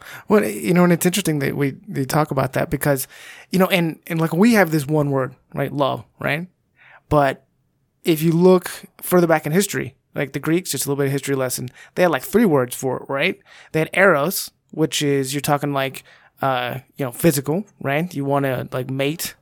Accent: American